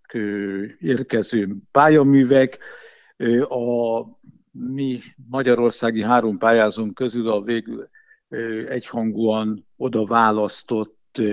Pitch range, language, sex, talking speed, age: 105-125 Hz, Hungarian, male, 70 wpm, 60-79